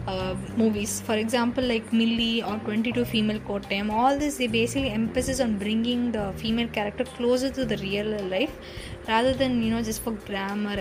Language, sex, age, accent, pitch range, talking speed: Tamil, female, 20-39, native, 195-230 Hz, 180 wpm